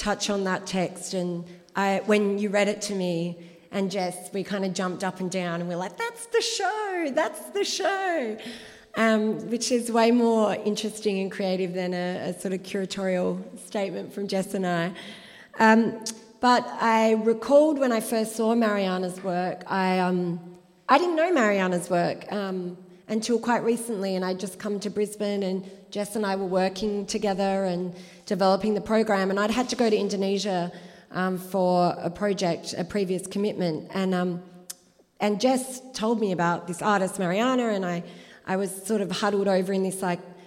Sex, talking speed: female, 180 wpm